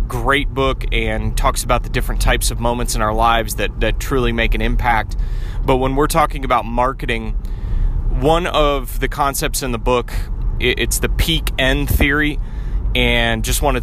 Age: 30-49